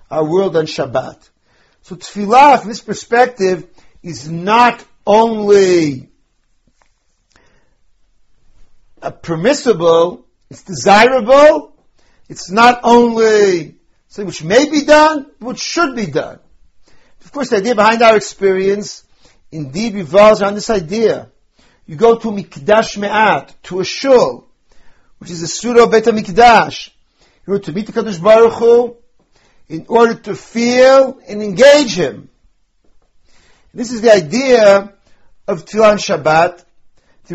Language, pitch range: English, 175-230 Hz